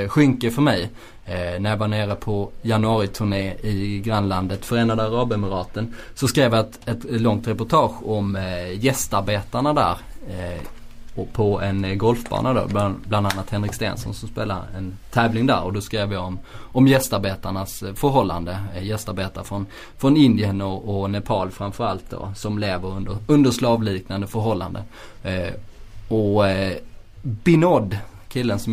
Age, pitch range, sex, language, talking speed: 20-39, 100-115 Hz, male, Swedish, 150 wpm